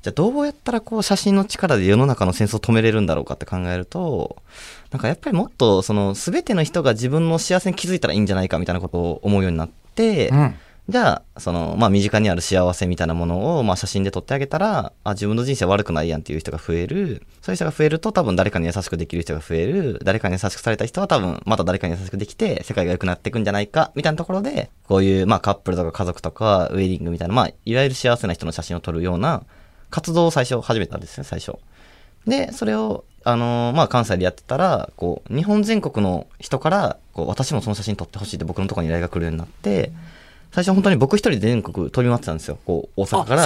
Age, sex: 20-39, male